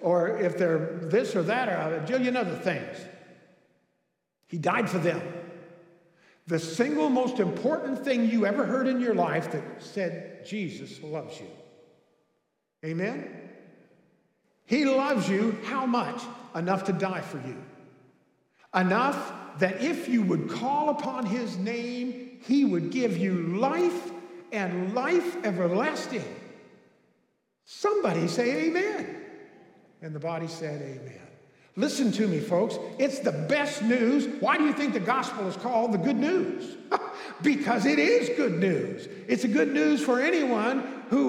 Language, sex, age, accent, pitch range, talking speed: English, male, 50-69, American, 190-285 Hz, 145 wpm